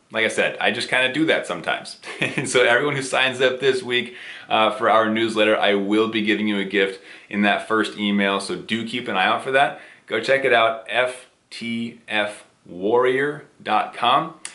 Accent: American